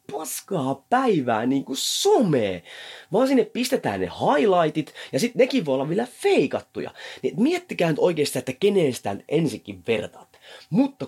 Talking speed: 140 wpm